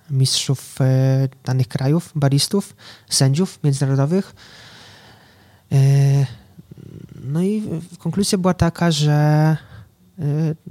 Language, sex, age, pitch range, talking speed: Polish, male, 20-39, 125-145 Hz, 95 wpm